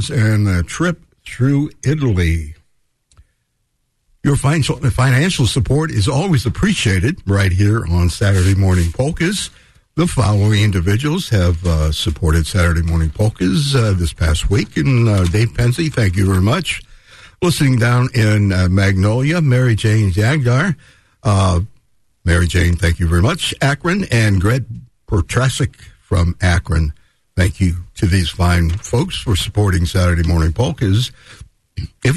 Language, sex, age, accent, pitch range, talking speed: English, male, 60-79, American, 85-120 Hz, 130 wpm